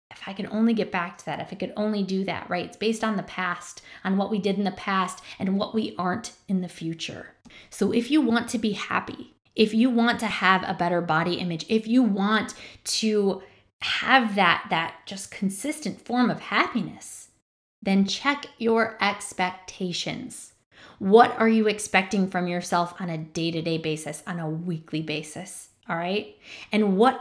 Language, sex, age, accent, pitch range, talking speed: English, female, 20-39, American, 185-245 Hz, 185 wpm